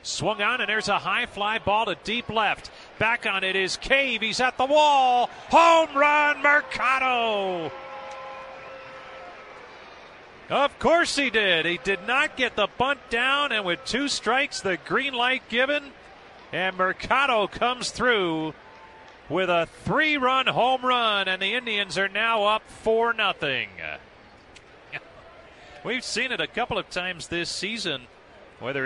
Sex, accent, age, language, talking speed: male, American, 40-59, English, 145 wpm